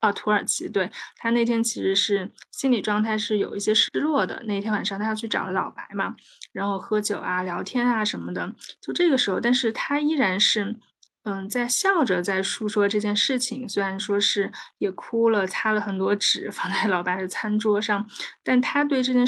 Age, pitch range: 20-39, 195-230 Hz